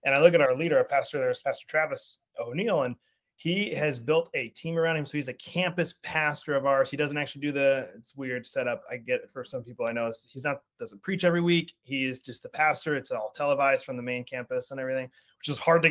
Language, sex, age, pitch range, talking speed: English, male, 30-49, 130-165 Hz, 255 wpm